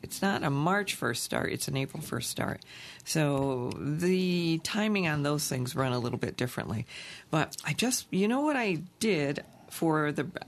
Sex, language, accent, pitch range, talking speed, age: female, English, American, 145-190 Hz, 185 wpm, 50-69